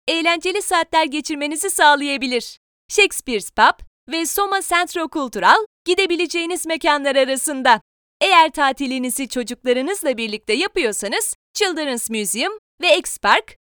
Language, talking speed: Turkish, 100 wpm